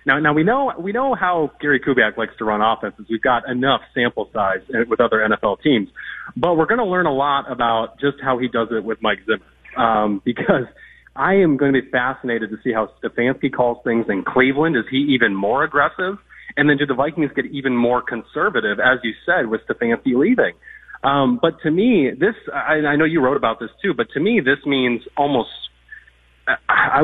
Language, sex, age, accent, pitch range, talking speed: English, male, 30-49, American, 115-150 Hz, 205 wpm